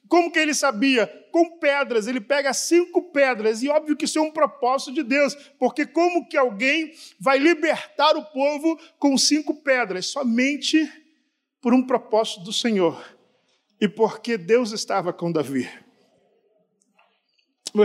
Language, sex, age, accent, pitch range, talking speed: Portuguese, male, 50-69, Brazilian, 215-270 Hz, 145 wpm